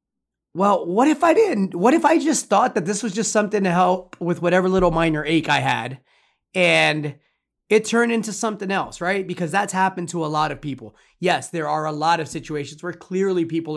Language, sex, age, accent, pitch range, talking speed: English, male, 30-49, American, 155-220 Hz, 215 wpm